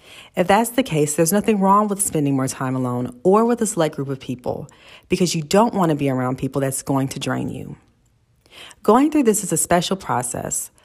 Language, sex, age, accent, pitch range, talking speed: English, female, 40-59, American, 135-185 Hz, 215 wpm